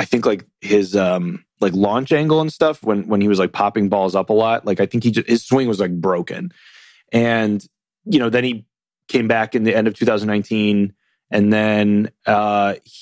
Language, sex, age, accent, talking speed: English, male, 30-49, American, 220 wpm